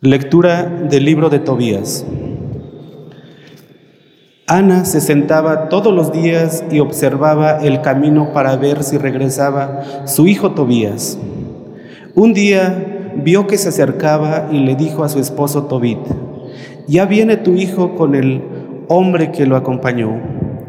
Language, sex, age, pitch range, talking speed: Spanish, male, 40-59, 140-175 Hz, 130 wpm